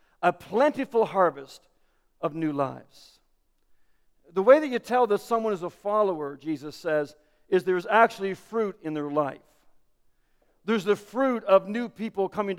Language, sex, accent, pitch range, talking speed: English, male, American, 190-235 Hz, 155 wpm